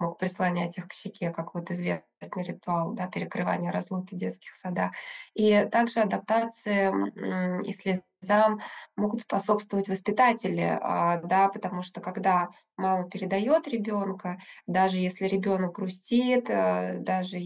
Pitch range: 185-225 Hz